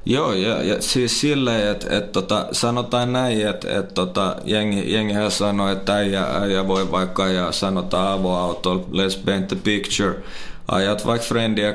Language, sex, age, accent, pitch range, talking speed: Finnish, male, 20-39, native, 95-105 Hz, 160 wpm